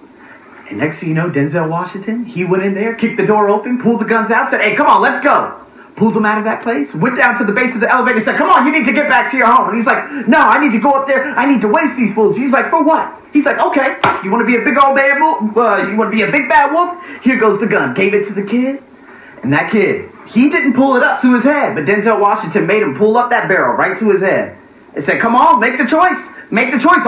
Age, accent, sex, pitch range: 30-49, American, male, 190-270 Hz